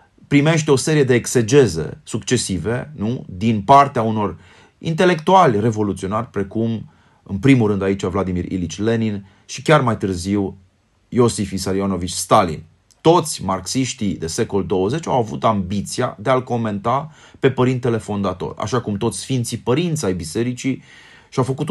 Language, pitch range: Romanian, 100-135 Hz